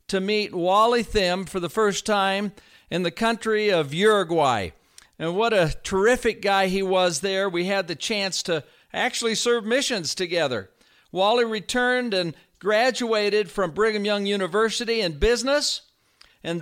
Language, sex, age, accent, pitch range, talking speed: English, male, 50-69, American, 180-230 Hz, 150 wpm